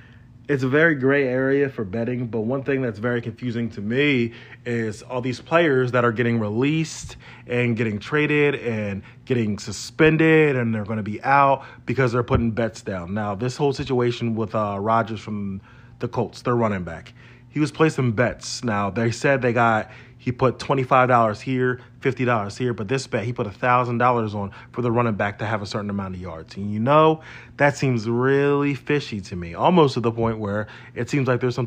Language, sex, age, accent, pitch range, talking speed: English, male, 30-49, American, 110-130 Hz, 200 wpm